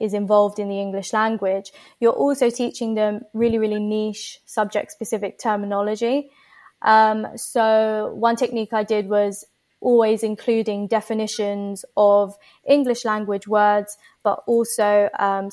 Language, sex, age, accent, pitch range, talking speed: English, female, 20-39, British, 205-230 Hz, 130 wpm